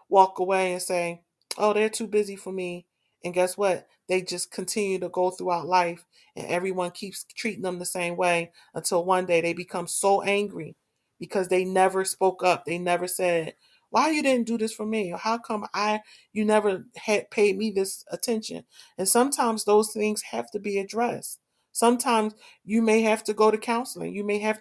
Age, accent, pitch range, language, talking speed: 40-59, American, 185-225 Hz, English, 195 wpm